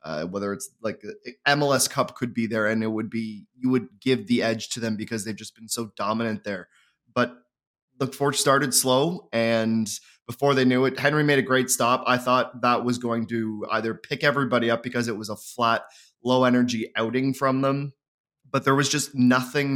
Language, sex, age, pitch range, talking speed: English, male, 20-39, 110-130 Hz, 205 wpm